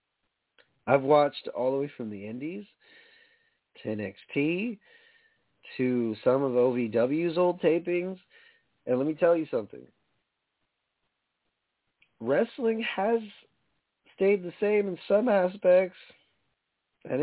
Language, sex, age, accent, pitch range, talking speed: English, male, 30-49, American, 125-170 Hz, 110 wpm